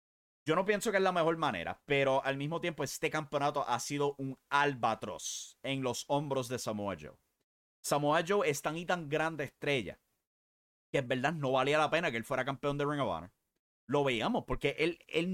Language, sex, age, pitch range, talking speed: English, male, 30-49, 125-160 Hz, 205 wpm